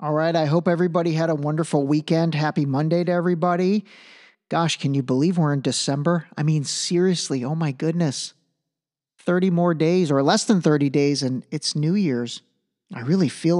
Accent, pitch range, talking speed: American, 150-185 Hz, 180 wpm